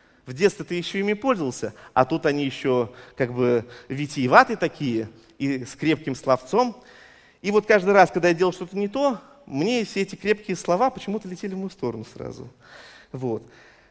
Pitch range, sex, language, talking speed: 145-215 Hz, male, Russian, 175 wpm